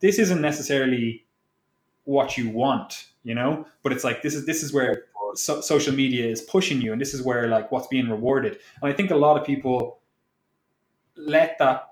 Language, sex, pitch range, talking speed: English, male, 125-150 Hz, 195 wpm